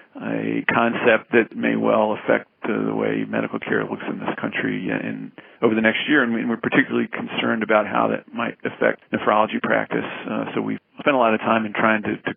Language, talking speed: English, 215 wpm